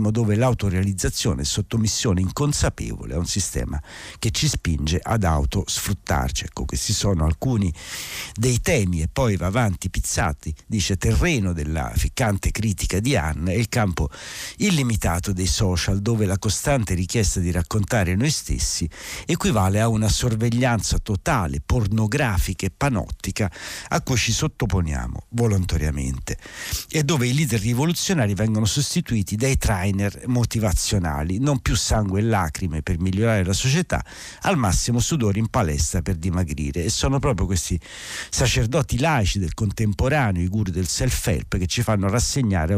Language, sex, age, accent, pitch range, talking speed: Italian, male, 60-79, native, 90-120 Hz, 140 wpm